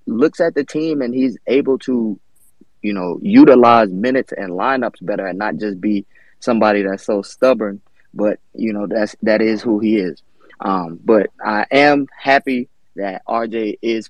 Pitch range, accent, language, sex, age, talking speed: 100-125 Hz, American, English, male, 20-39, 170 wpm